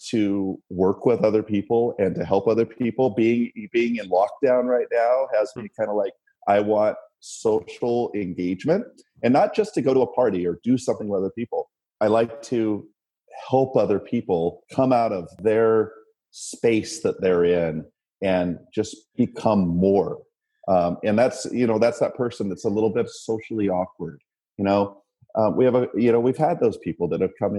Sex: male